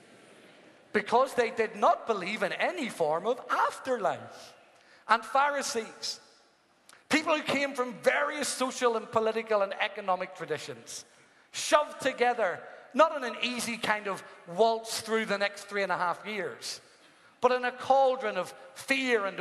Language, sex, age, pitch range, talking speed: English, male, 40-59, 190-245 Hz, 145 wpm